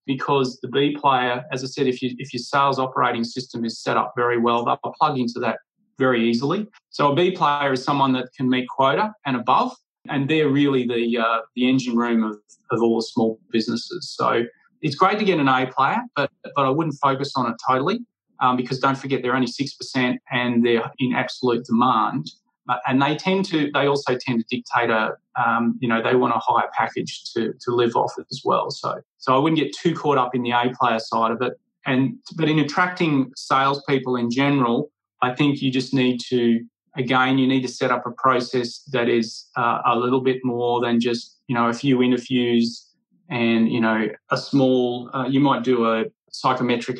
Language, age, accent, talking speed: English, 30-49, Australian, 210 wpm